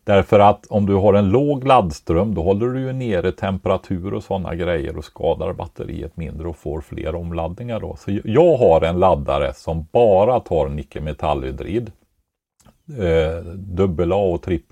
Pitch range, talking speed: 75-95 Hz, 145 wpm